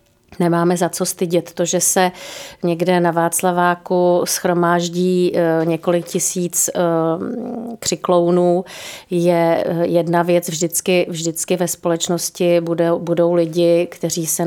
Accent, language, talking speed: native, Czech, 105 wpm